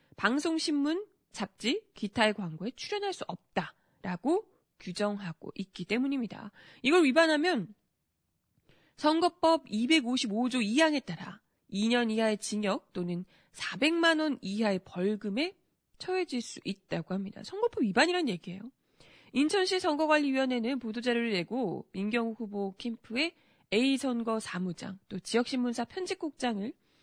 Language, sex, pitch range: Korean, female, 195-300 Hz